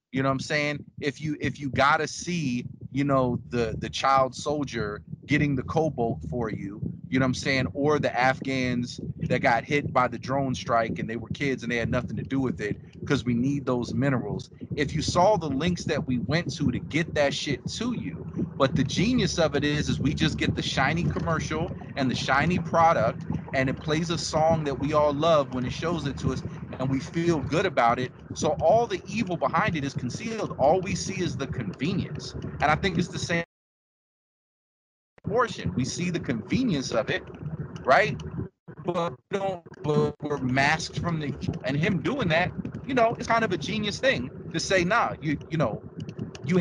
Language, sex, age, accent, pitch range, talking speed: English, male, 30-49, American, 130-165 Hz, 210 wpm